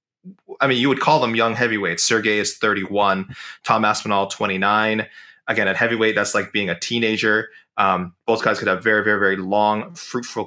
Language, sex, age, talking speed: English, male, 20-39, 185 wpm